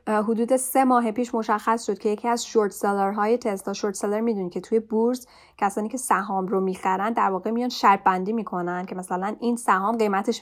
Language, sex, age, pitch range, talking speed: Persian, female, 10-29, 190-225 Hz, 195 wpm